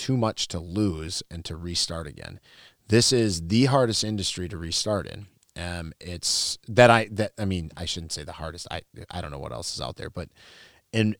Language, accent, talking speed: English, American, 210 wpm